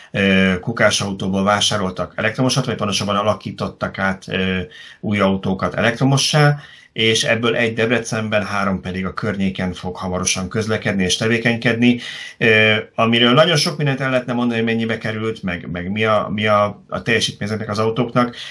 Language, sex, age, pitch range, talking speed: Hungarian, male, 30-49, 95-115 Hz, 140 wpm